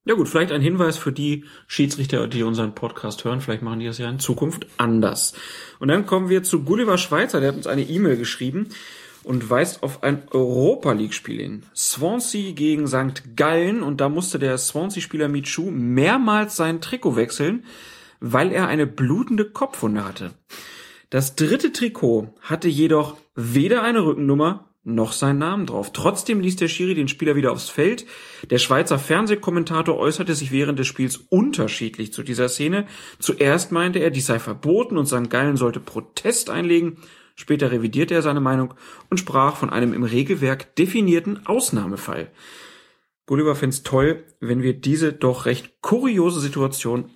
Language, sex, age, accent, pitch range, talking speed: German, male, 40-59, German, 125-170 Hz, 160 wpm